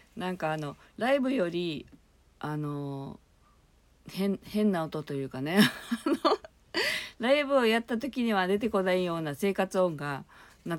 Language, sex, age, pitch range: Japanese, female, 50-69, 145-210 Hz